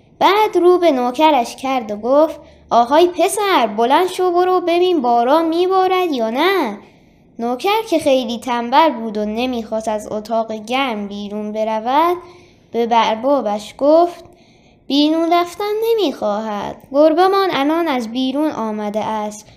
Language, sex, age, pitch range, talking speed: Persian, female, 20-39, 225-335 Hz, 125 wpm